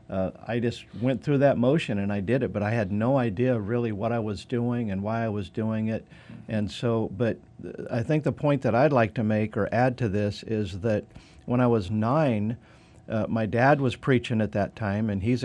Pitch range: 105-125 Hz